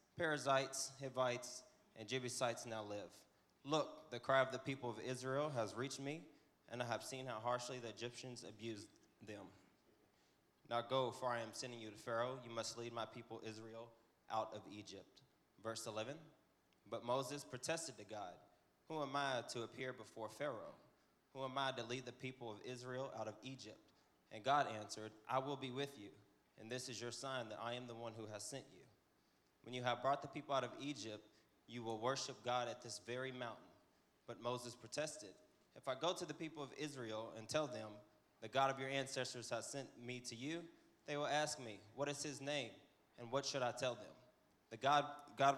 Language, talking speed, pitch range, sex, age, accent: English, 200 wpm, 115-140 Hz, male, 20-39, American